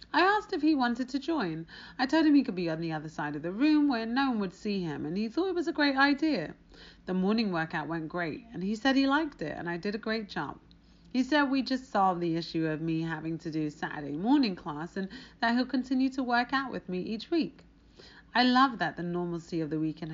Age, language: 30-49, English